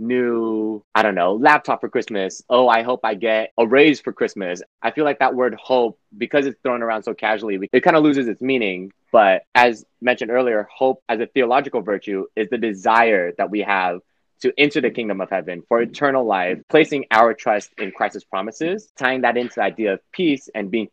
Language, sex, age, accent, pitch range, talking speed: English, male, 20-39, American, 100-130 Hz, 210 wpm